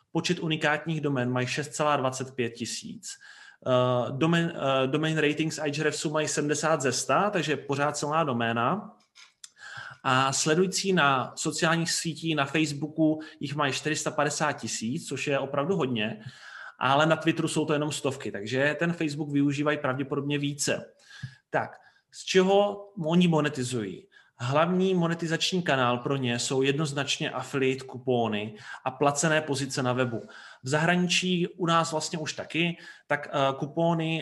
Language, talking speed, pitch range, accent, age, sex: Czech, 130 wpm, 135-160 Hz, native, 30-49, male